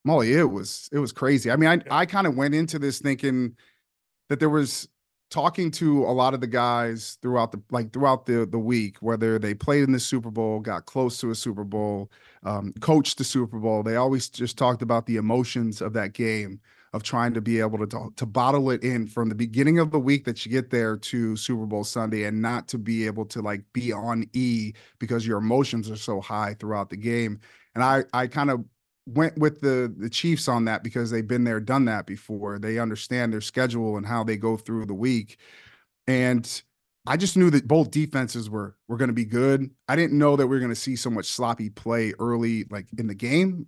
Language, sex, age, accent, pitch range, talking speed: English, male, 30-49, American, 115-135 Hz, 230 wpm